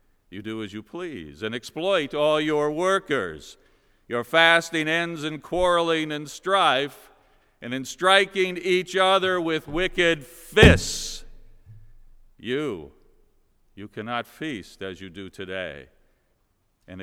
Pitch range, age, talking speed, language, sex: 110-160 Hz, 50-69, 120 wpm, English, male